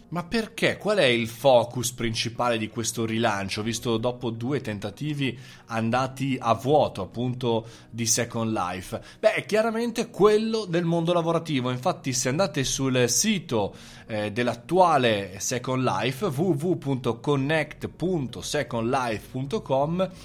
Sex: male